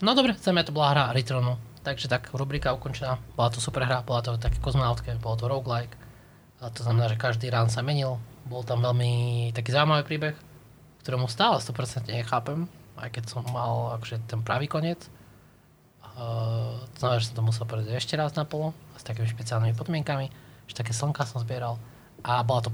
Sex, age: male, 20-39